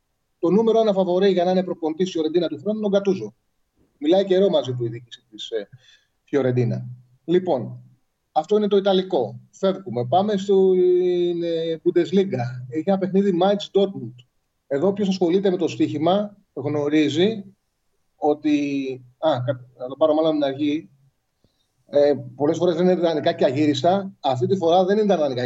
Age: 30-49